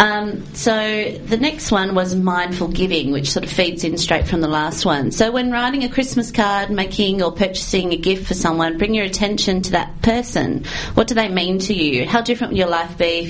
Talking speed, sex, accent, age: 225 wpm, female, Australian, 30-49